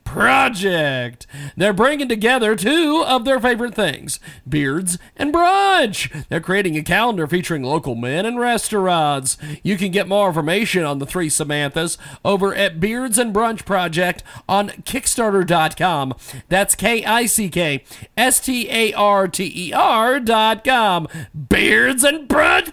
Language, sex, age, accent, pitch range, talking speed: English, male, 40-59, American, 165-230 Hz, 115 wpm